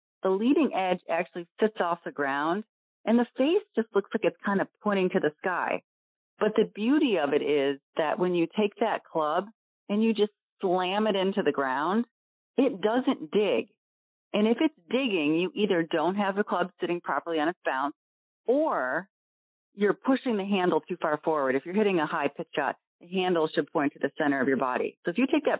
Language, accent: English, American